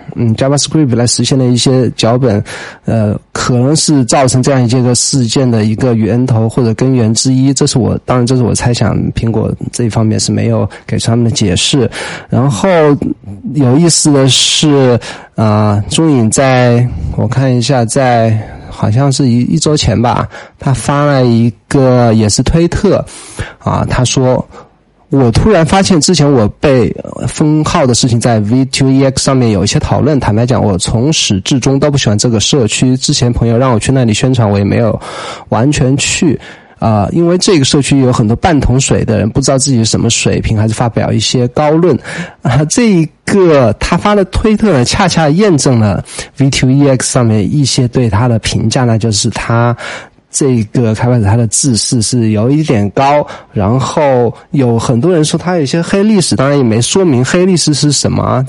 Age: 20-39